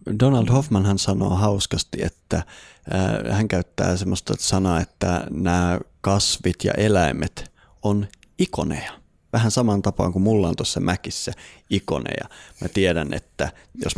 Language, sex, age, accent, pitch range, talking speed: Finnish, male, 30-49, native, 85-100 Hz, 135 wpm